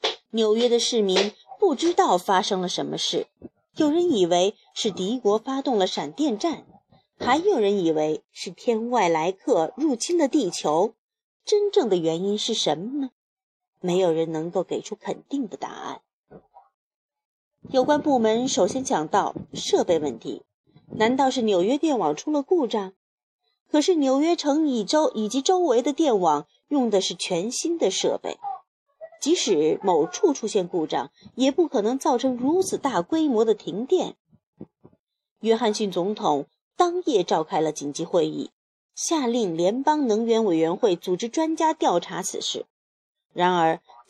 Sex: female